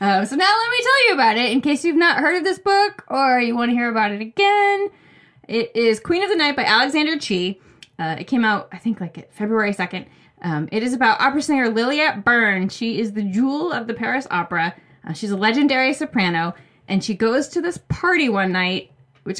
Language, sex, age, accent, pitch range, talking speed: English, female, 20-39, American, 185-260 Hz, 225 wpm